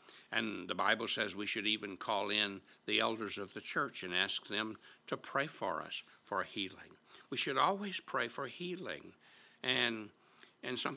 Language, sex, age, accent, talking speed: English, male, 60-79, American, 175 wpm